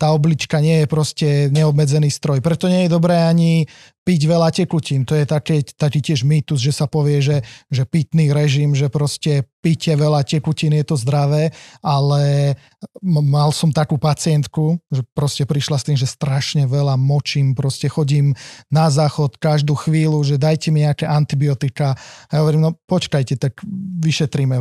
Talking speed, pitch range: 165 wpm, 140-160 Hz